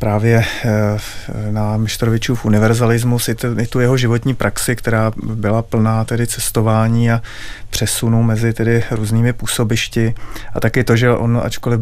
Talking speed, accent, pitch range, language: 130 wpm, native, 110-120 Hz, Czech